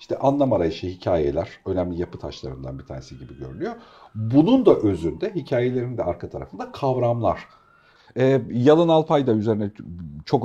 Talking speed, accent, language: 140 wpm, native, Turkish